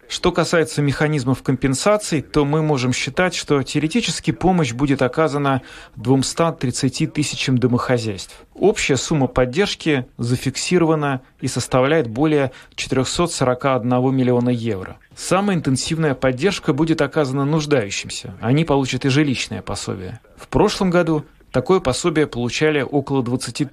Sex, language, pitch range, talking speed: male, Russian, 120-150 Hz, 115 wpm